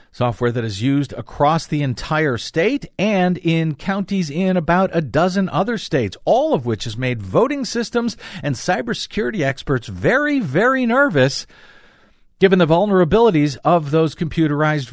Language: English